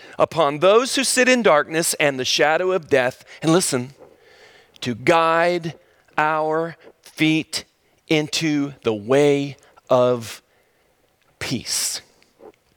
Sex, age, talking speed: male, 40-59, 105 wpm